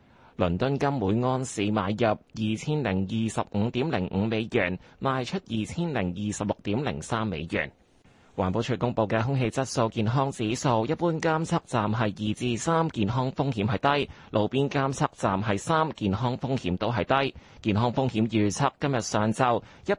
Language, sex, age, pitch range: Chinese, male, 30-49, 105-140 Hz